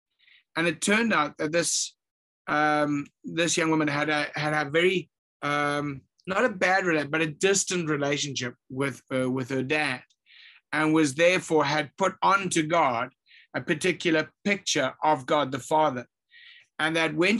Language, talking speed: English, 160 wpm